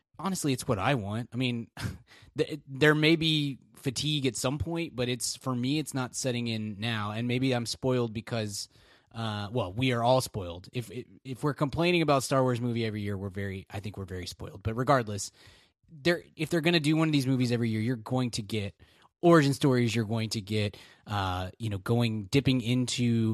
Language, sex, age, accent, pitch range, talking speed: English, male, 20-39, American, 110-140 Hz, 205 wpm